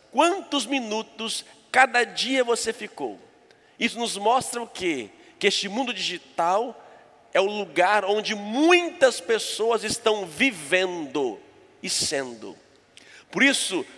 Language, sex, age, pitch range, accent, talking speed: Portuguese, male, 50-69, 190-270 Hz, Brazilian, 115 wpm